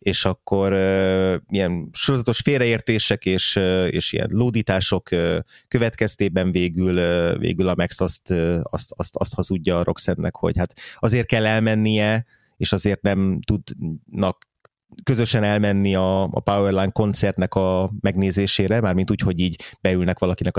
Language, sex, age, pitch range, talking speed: Hungarian, male, 30-49, 90-110 Hz, 145 wpm